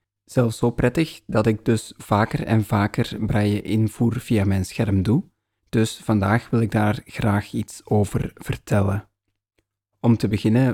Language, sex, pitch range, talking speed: Dutch, male, 105-120 Hz, 145 wpm